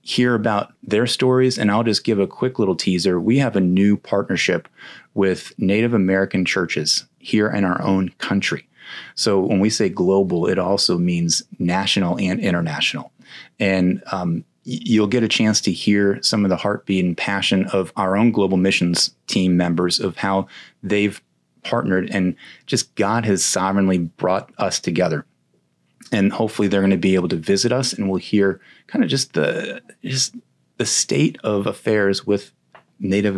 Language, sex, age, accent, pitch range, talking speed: English, male, 30-49, American, 90-110 Hz, 170 wpm